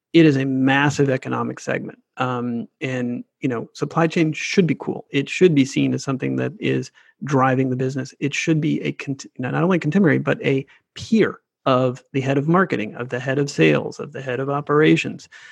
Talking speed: 200 wpm